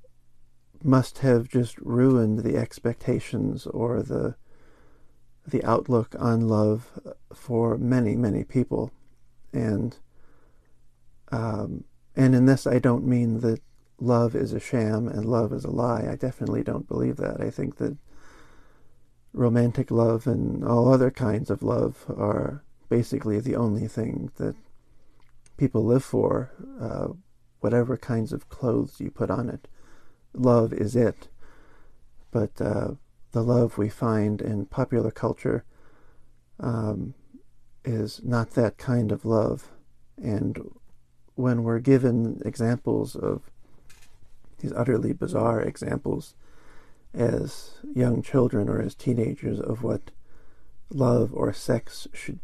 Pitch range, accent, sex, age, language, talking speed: 105-125 Hz, American, male, 50-69, English, 125 wpm